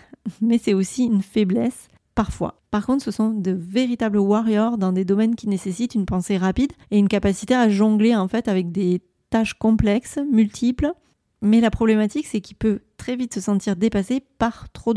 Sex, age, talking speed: female, 30-49, 175 wpm